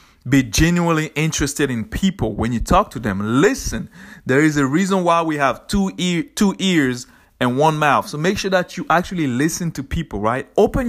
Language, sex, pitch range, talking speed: English, male, 130-185 Hz, 200 wpm